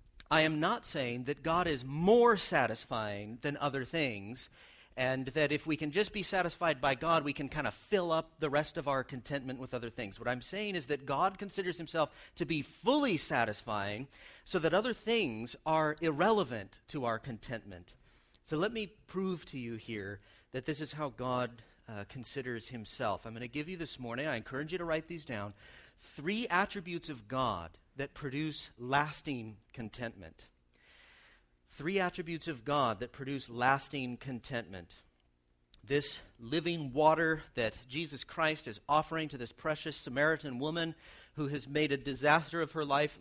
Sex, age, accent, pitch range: male, 40-59, American, 115-160 Hz